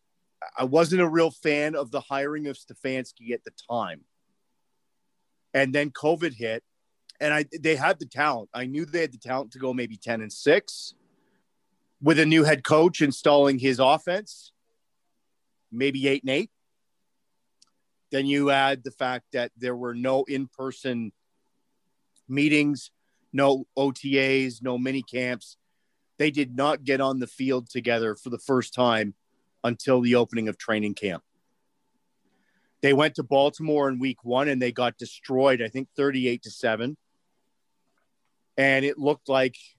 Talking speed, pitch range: 150 wpm, 120-140 Hz